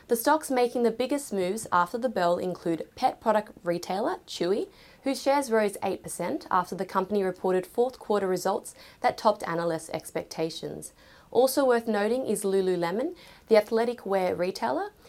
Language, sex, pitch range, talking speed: English, female, 185-250 Hz, 150 wpm